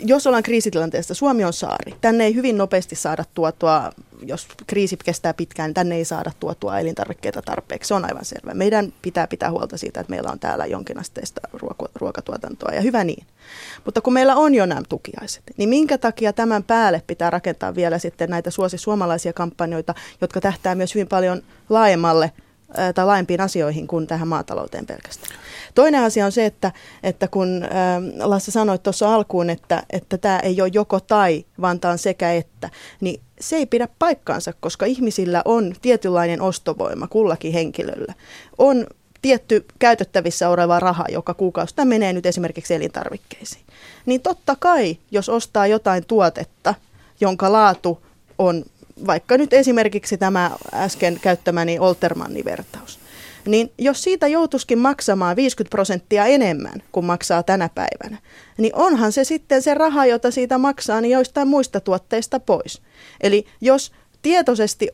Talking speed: 155 wpm